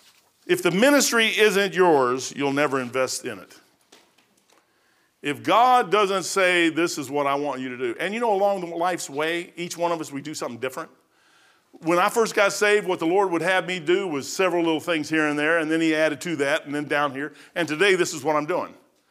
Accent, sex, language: American, male, English